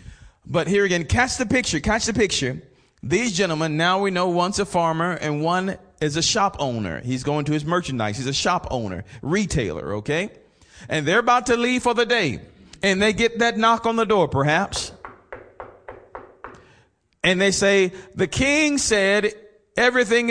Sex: male